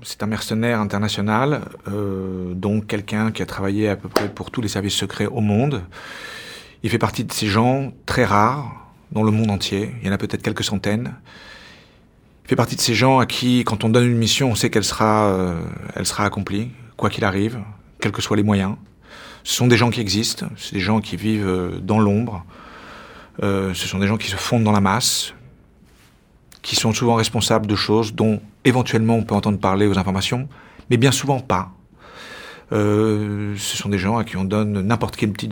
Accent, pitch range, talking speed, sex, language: French, 100-115 Hz, 210 wpm, male, French